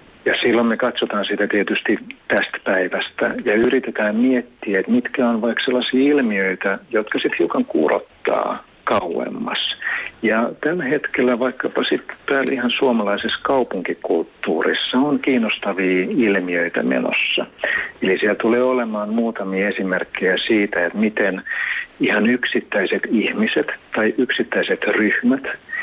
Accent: native